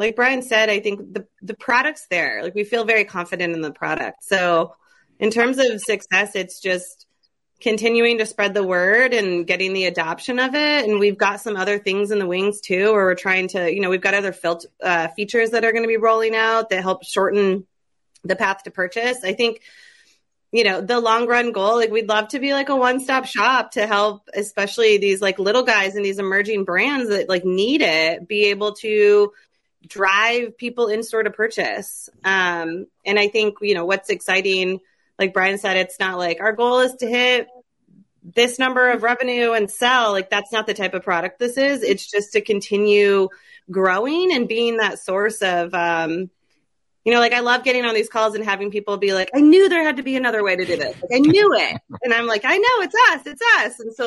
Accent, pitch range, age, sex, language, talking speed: American, 195-240 Hz, 30-49, female, English, 215 wpm